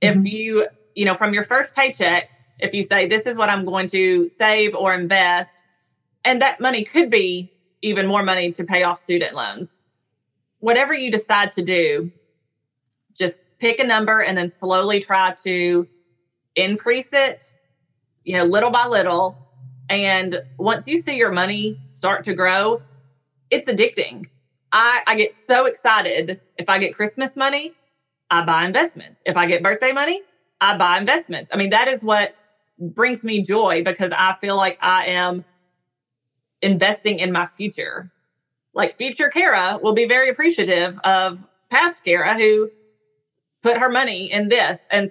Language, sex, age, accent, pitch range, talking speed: English, female, 30-49, American, 175-220 Hz, 160 wpm